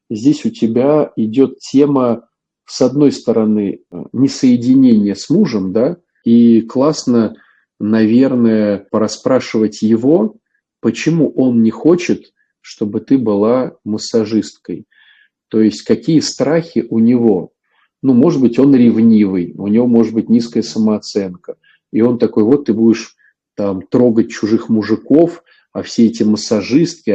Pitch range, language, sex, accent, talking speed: 105-125 Hz, Russian, male, native, 125 wpm